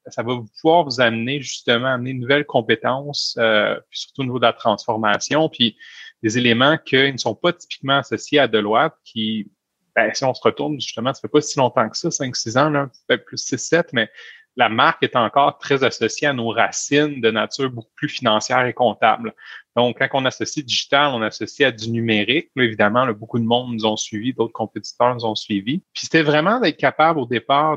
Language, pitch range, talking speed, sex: French, 115-145 Hz, 210 wpm, male